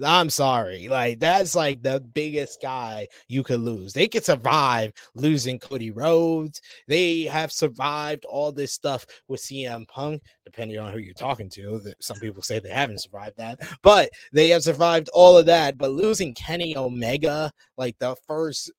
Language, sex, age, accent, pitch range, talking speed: English, male, 20-39, American, 135-150 Hz, 170 wpm